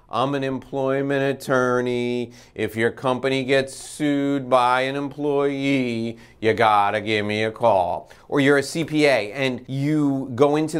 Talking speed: 145 wpm